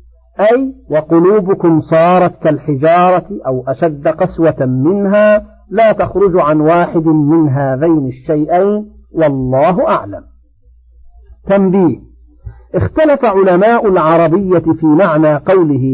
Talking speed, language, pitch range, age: 90 wpm, Arabic, 135-200 Hz, 50-69